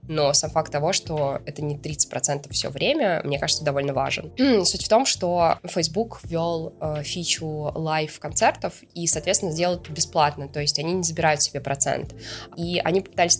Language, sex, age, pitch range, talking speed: Russian, female, 20-39, 145-165 Hz, 170 wpm